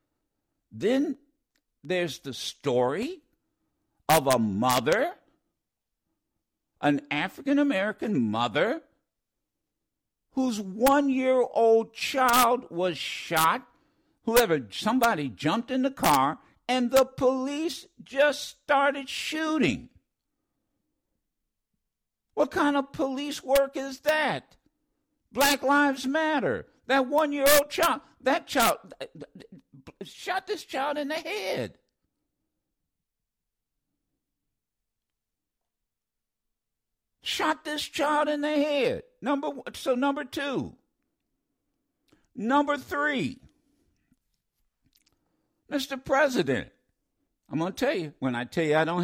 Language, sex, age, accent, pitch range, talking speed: English, male, 60-79, American, 240-295 Hz, 90 wpm